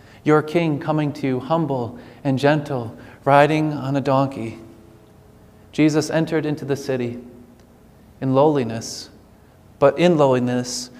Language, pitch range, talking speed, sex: English, 125-155 Hz, 120 wpm, male